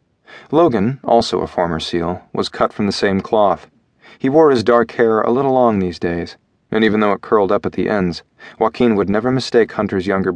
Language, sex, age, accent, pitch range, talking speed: English, male, 40-59, American, 90-110 Hz, 210 wpm